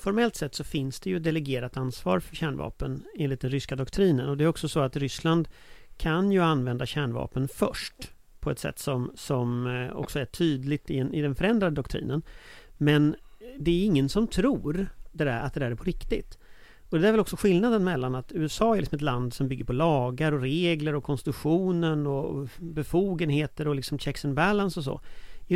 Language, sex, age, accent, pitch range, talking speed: Swedish, male, 40-59, native, 135-180 Hz, 190 wpm